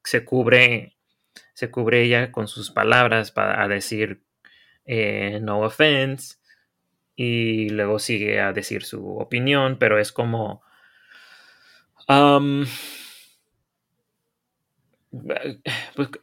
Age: 30-49